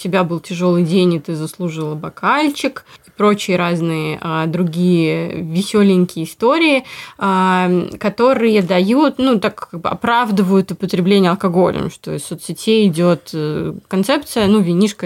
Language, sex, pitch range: Russian, female, 170-200 Hz